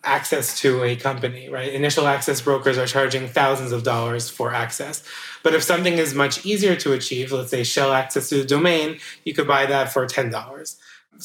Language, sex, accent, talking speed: English, male, American, 190 wpm